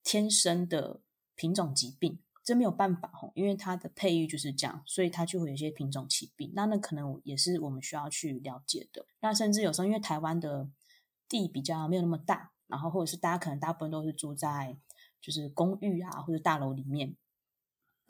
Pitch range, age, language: 150-195 Hz, 20-39, Chinese